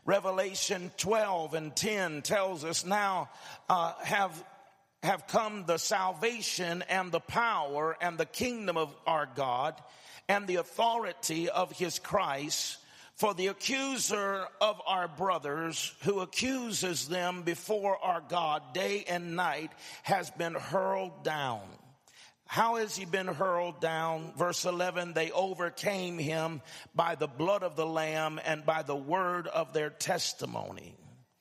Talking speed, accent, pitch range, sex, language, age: 135 wpm, American, 160-190 Hz, male, English, 50-69